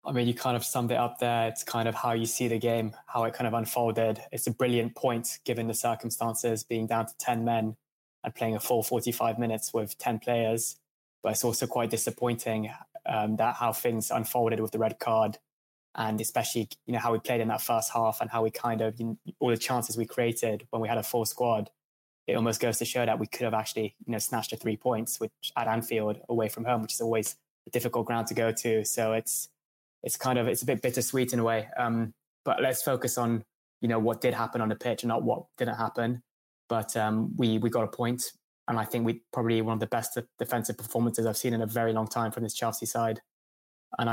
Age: 20-39